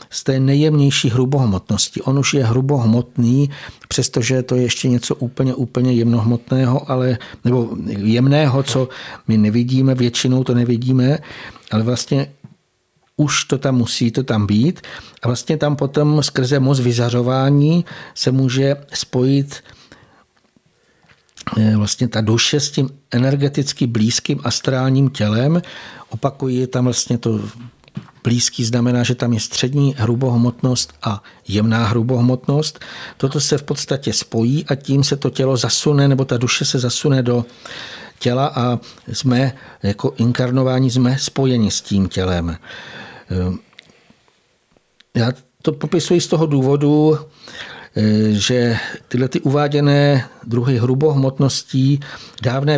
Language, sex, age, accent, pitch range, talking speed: Czech, male, 60-79, native, 120-140 Hz, 120 wpm